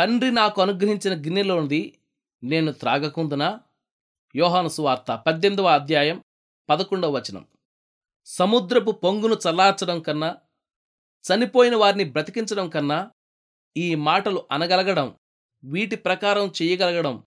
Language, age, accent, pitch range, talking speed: Telugu, 30-49, native, 165-210 Hz, 90 wpm